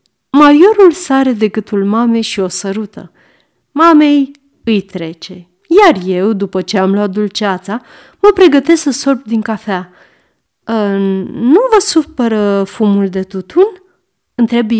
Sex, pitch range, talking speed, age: female, 195-325 Hz, 125 wpm, 30-49